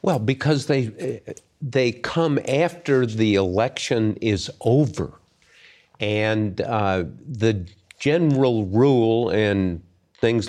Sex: male